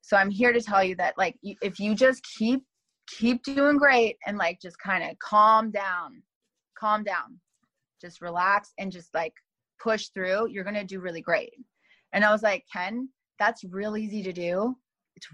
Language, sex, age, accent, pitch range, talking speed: English, female, 20-39, American, 190-240 Hz, 190 wpm